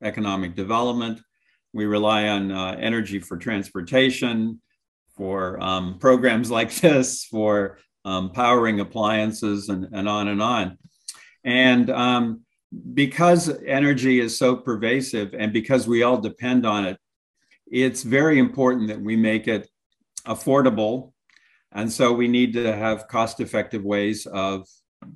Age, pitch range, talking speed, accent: 50-69, 105-125 Hz, 130 wpm, American